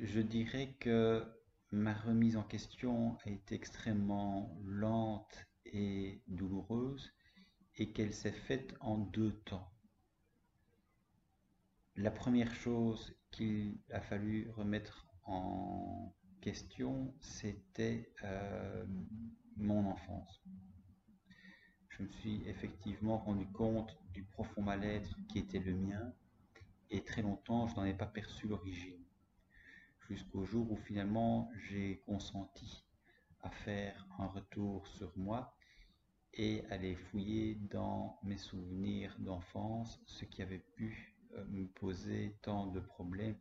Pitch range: 95-110 Hz